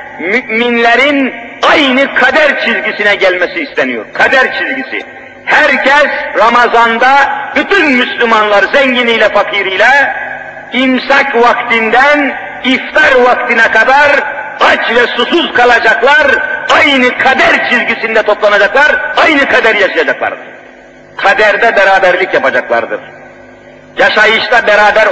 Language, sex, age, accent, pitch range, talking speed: Turkish, male, 50-69, native, 215-275 Hz, 85 wpm